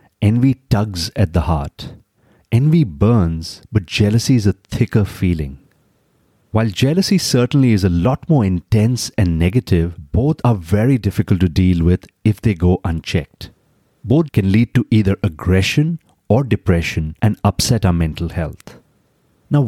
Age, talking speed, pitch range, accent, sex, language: 30-49, 145 wpm, 95-125 Hz, Indian, male, English